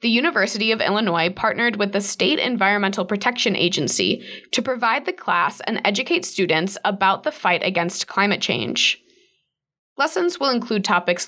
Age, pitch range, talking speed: 20-39, 185-255 Hz, 150 wpm